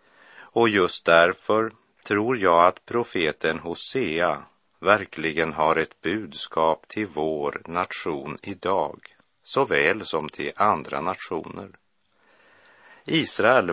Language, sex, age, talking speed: Swedish, male, 50-69, 95 wpm